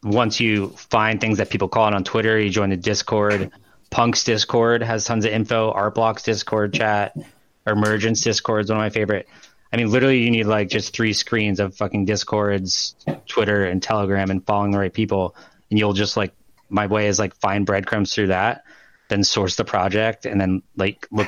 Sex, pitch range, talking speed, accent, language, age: male, 100-110 Hz, 195 wpm, American, English, 20-39